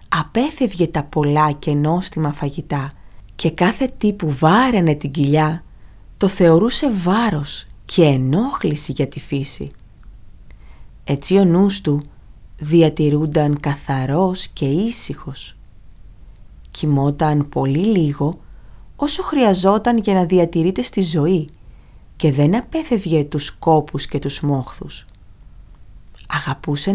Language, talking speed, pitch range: Greek, 105 wpm, 140-195 Hz